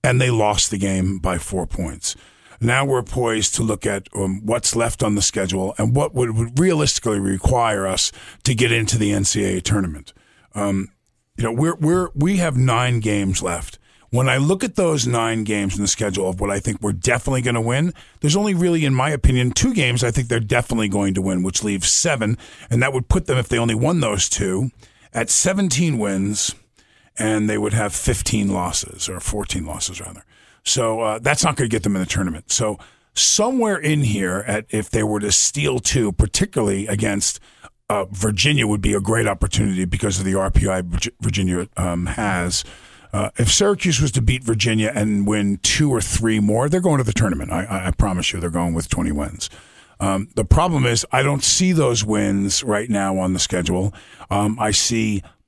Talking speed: 200 wpm